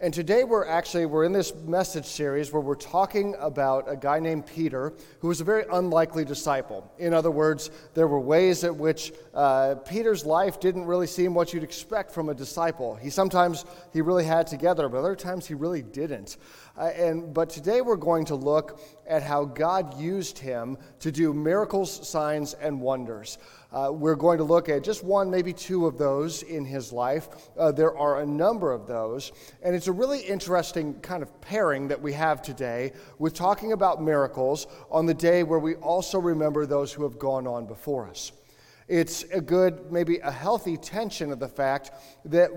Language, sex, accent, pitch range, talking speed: English, male, American, 145-180 Hz, 195 wpm